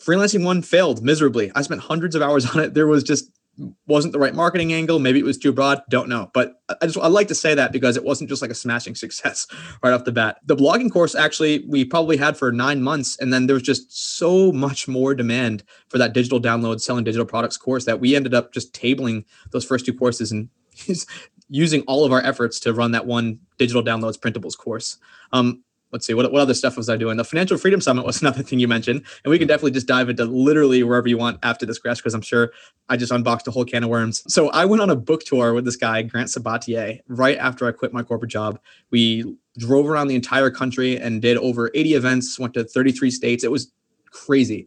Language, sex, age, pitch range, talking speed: English, male, 20-39, 120-145 Hz, 240 wpm